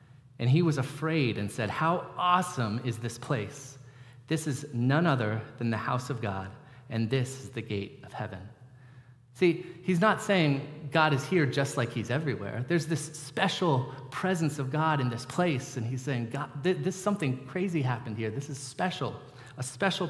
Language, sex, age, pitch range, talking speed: English, male, 30-49, 125-155 Hz, 180 wpm